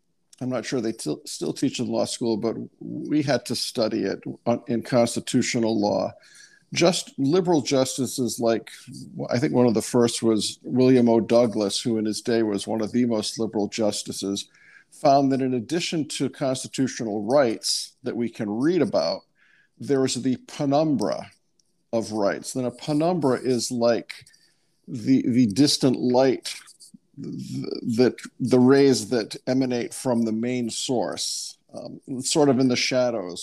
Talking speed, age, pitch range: 155 wpm, 50-69, 115-135 Hz